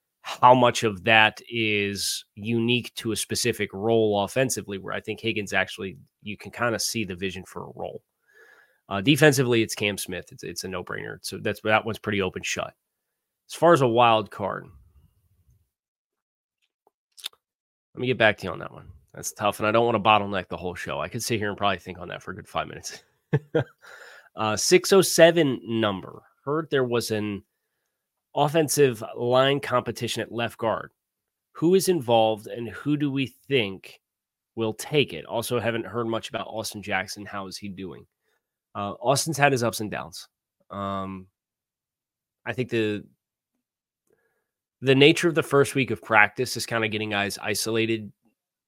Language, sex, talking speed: English, male, 175 wpm